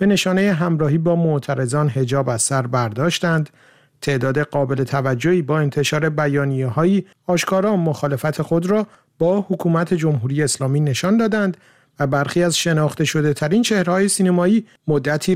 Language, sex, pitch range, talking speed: Persian, male, 145-180 Hz, 135 wpm